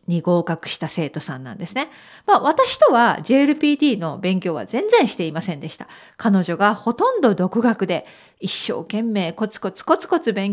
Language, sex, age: Japanese, female, 40-59